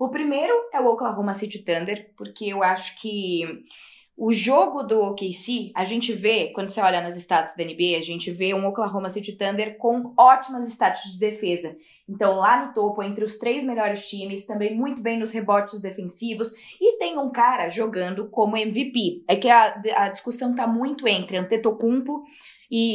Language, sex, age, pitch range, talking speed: Portuguese, female, 20-39, 200-260 Hz, 180 wpm